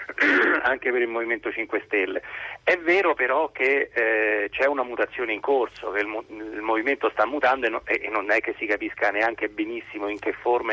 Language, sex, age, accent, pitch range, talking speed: Italian, male, 40-59, native, 110-160 Hz, 200 wpm